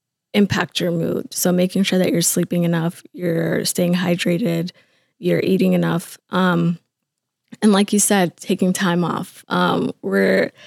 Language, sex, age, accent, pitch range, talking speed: English, female, 20-39, American, 170-190 Hz, 145 wpm